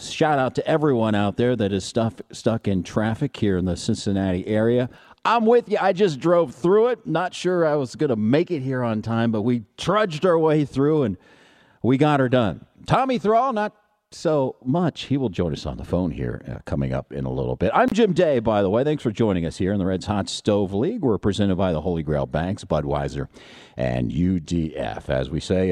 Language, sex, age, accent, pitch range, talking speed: English, male, 50-69, American, 95-140 Hz, 225 wpm